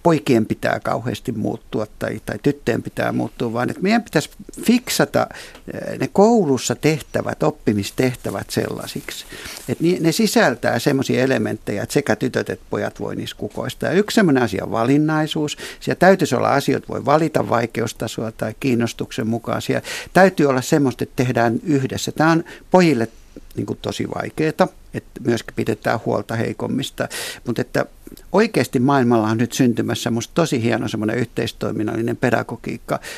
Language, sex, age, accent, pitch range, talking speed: Finnish, male, 60-79, native, 115-150 Hz, 135 wpm